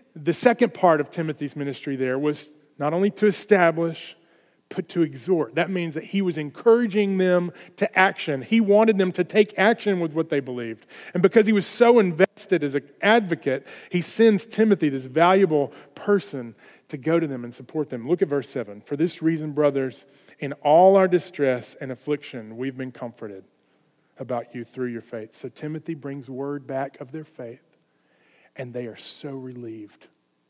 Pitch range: 140-190 Hz